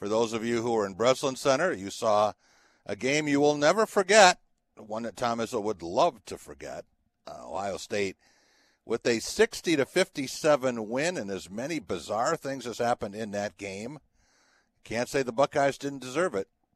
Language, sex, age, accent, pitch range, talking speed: English, male, 60-79, American, 110-150 Hz, 180 wpm